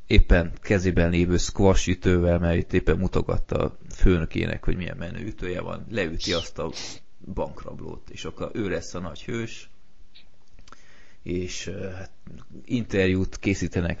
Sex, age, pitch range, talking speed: male, 20-39, 90-110 Hz, 125 wpm